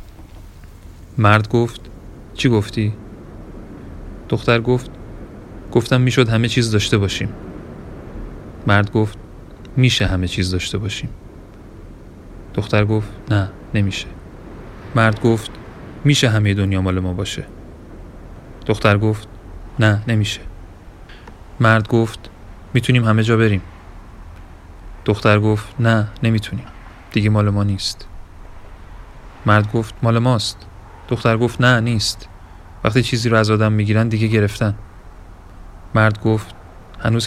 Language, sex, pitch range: Persian, male, 95-110 Hz